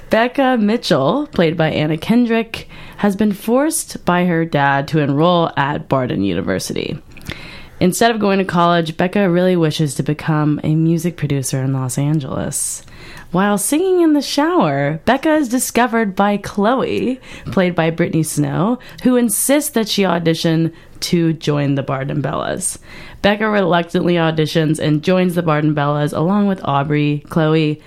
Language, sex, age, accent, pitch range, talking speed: English, female, 20-39, American, 150-200 Hz, 155 wpm